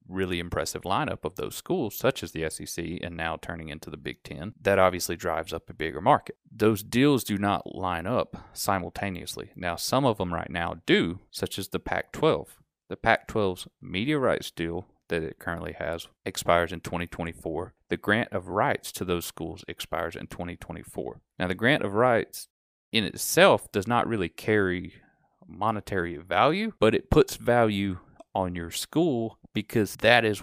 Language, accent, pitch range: English, American, 85-100 Hz